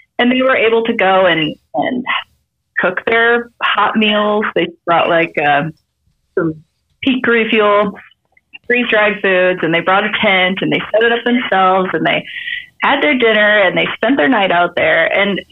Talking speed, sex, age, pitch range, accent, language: 175 wpm, female, 30-49, 180-255 Hz, American, English